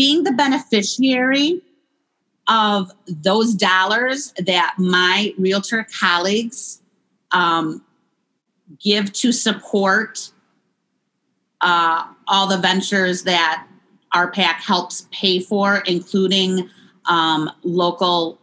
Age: 40-59